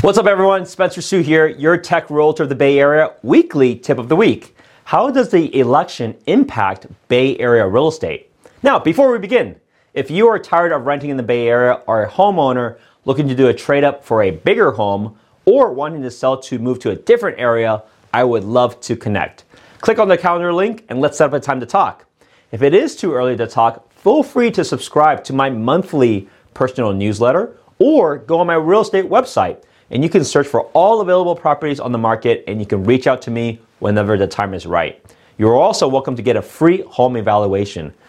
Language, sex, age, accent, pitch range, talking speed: English, male, 30-49, American, 115-180 Hz, 215 wpm